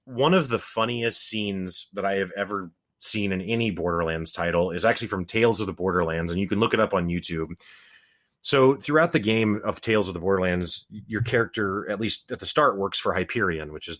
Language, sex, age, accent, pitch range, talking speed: English, male, 30-49, American, 90-120 Hz, 215 wpm